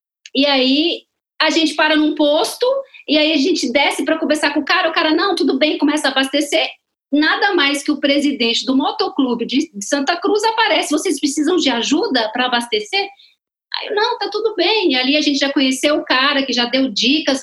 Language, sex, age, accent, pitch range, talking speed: Portuguese, female, 40-59, Brazilian, 225-320 Hz, 205 wpm